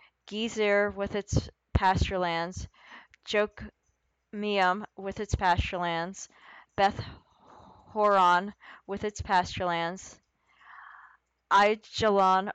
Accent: American